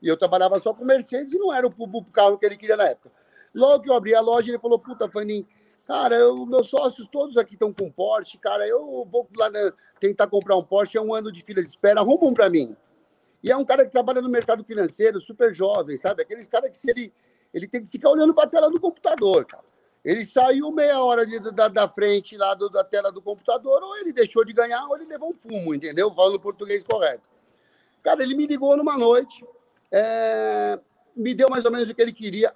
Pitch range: 205-280 Hz